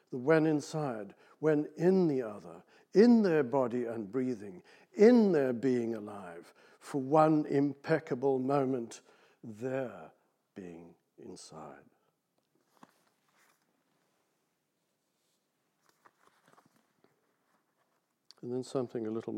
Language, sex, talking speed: English, male, 85 wpm